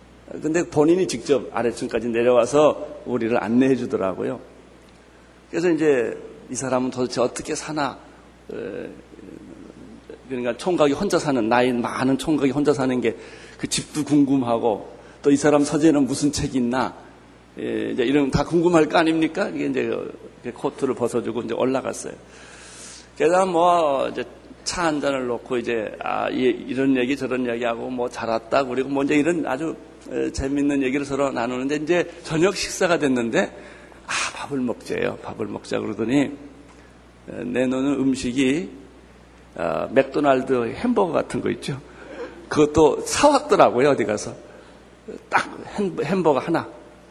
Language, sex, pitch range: Korean, male, 125-160 Hz